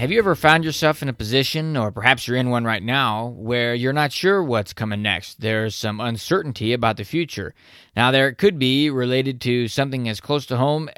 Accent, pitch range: American, 110-135 Hz